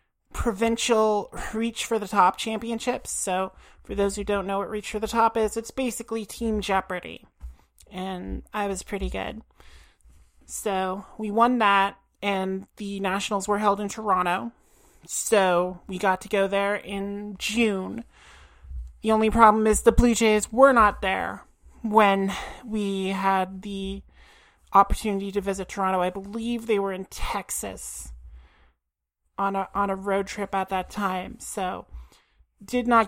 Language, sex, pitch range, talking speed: English, male, 190-220 Hz, 150 wpm